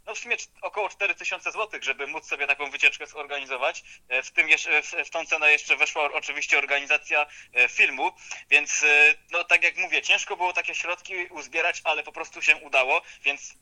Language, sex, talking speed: Polish, male, 165 wpm